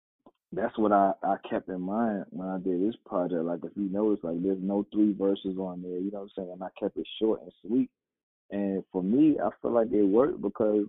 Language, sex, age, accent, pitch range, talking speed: English, male, 20-39, American, 95-115 Hz, 245 wpm